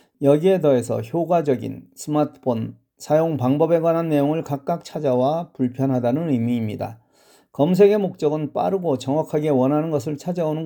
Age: 40-59